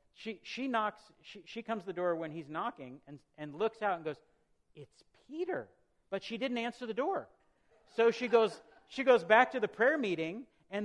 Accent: American